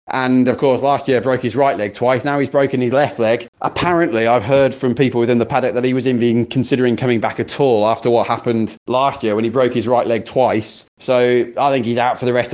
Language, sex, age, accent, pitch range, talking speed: English, male, 30-49, British, 115-140 Hz, 255 wpm